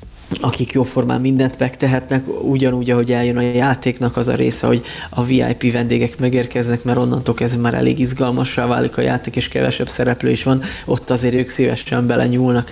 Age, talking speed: 20-39, 170 wpm